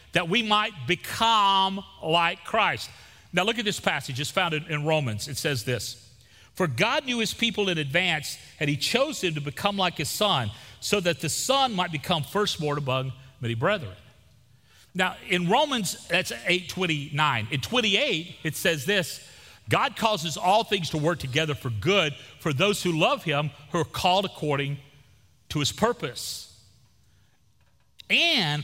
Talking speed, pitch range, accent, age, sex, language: 160 wpm, 120-175 Hz, American, 40-59, male, English